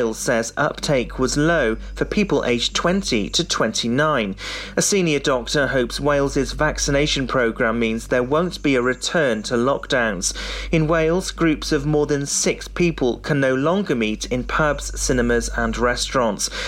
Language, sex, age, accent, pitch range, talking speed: English, male, 30-49, British, 125-160 Hz, 160 wpm